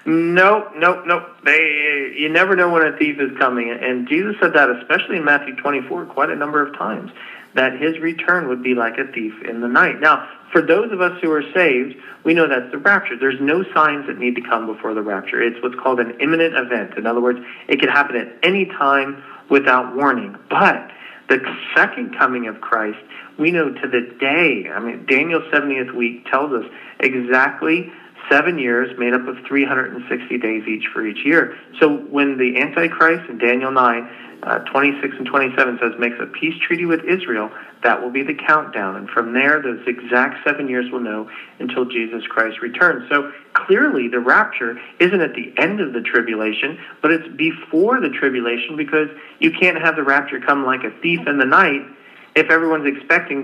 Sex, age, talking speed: male, 40-59, 195 wpm